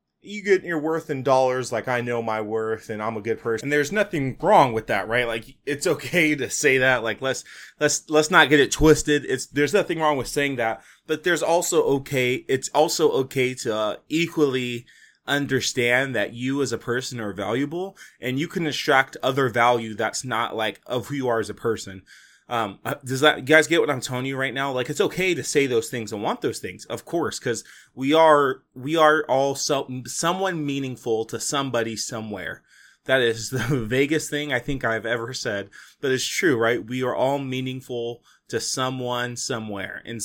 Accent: American